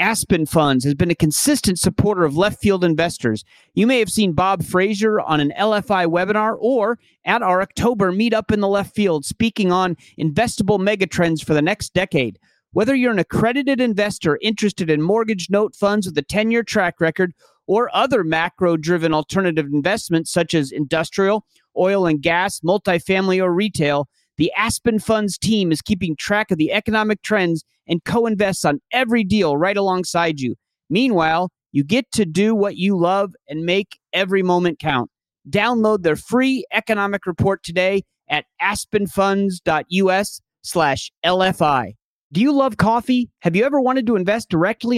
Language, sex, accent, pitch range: English, male, American, 170-215 Hz